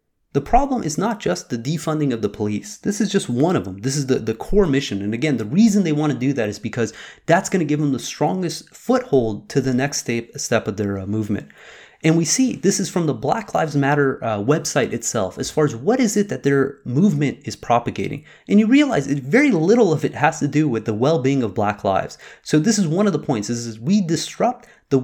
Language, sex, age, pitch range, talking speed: English, male, 30-49, 135-195 Hz, 245 wpm